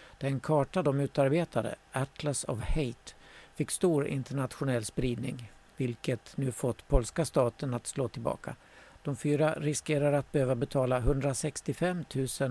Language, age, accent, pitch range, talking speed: Swedish, 60-79, native, 120-145 Hz, 125 wpm